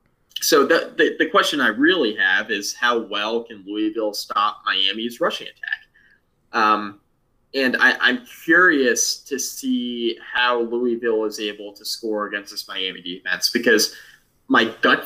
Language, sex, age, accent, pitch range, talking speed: English, male, 20-39, American, 110-150 Hz, 150 wpm